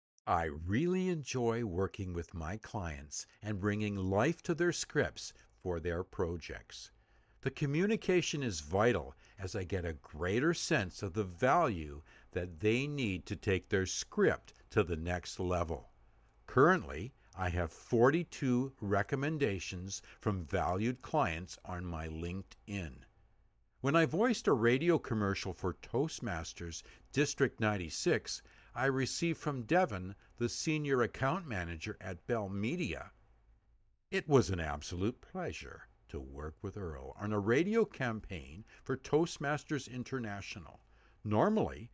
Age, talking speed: 60-79, 125 wpm